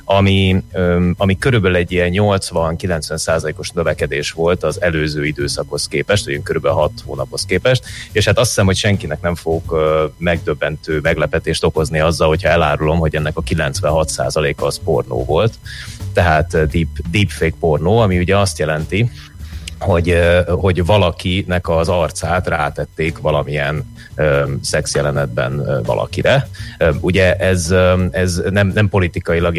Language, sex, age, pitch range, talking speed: Hungarian, male, 30-49, 80-95 Hz, 125 wpm